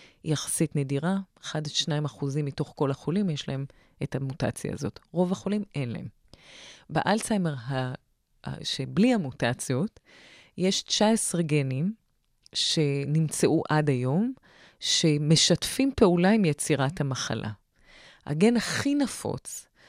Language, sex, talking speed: Hebrew, female, 100 wpm